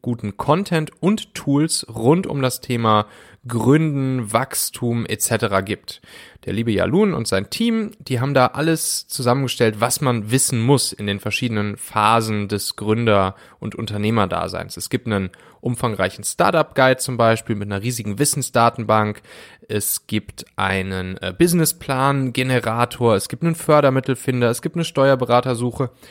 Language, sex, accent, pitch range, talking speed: German, male, German, 110-135 Hz, 135 wpm